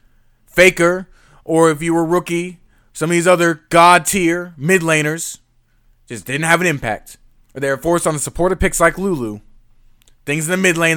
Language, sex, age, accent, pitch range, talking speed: English, male, 20-39, American, 130-180 Hz, 190 wpm